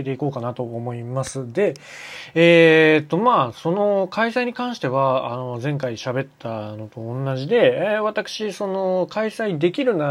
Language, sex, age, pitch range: Japanese, male, 20-39, 130-180 Hz